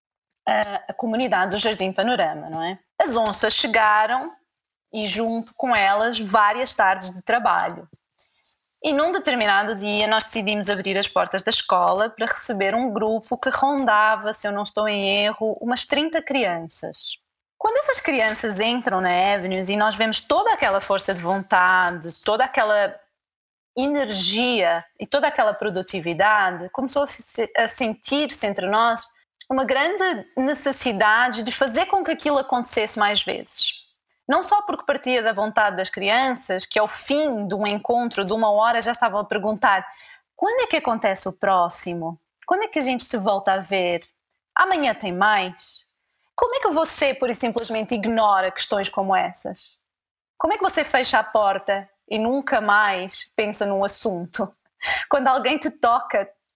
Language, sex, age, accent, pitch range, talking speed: Portuguese, female, 20-39, Brazilian, 200-265 Hz, 155 wpm